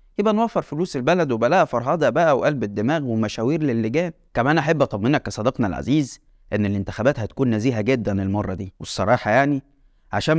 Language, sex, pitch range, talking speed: Arabic, male, 110-155 Hz, 150 wpm